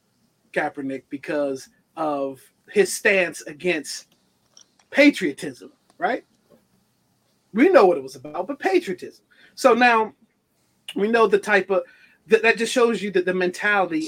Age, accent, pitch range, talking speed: 30-49, American, 165-225 Hz, 130 wpm